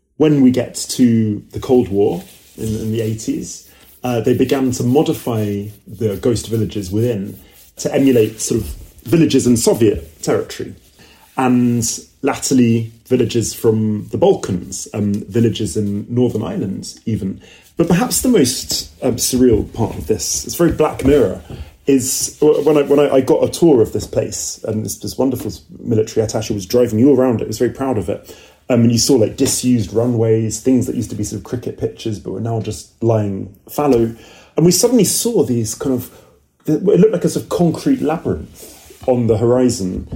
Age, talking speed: 30-49, 185 wpm